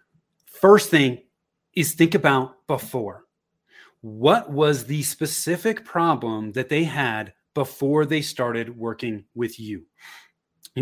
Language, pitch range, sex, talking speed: English, 130-170 Hz, male, 115 wpm